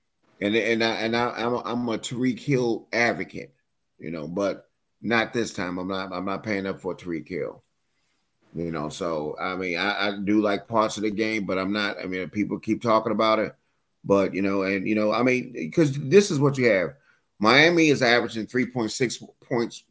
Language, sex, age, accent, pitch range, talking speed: English, male, 30-49, American, 105-130 Hz, 210 wpm